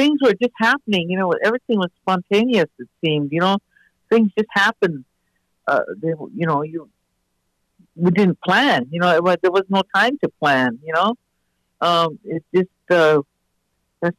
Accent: American